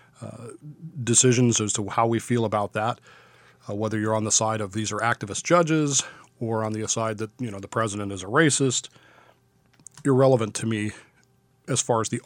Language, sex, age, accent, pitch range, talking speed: English, male, 40-59, American, 110-135 Hz, 190 wpm